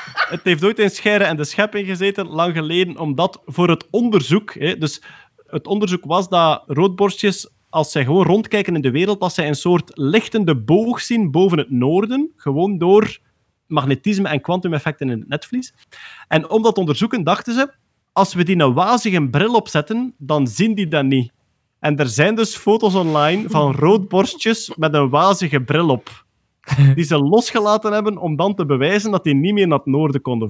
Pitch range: 145-200 Hz